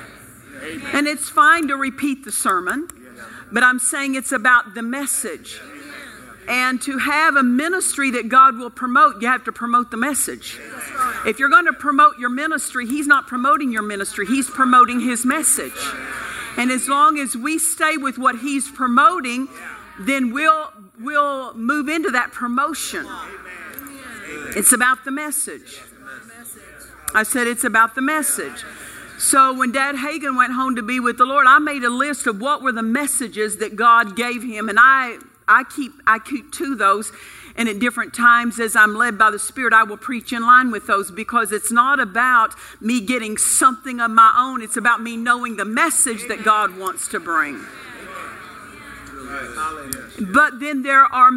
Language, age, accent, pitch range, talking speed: English, 50-69, American, 230-285 Hz, 170 wpm